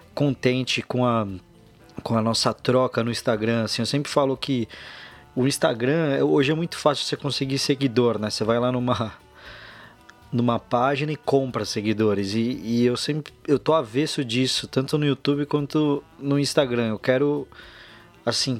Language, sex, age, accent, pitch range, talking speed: Portuguese, male, 20-39, Brazilian, 115-135 Hz, 160 wpm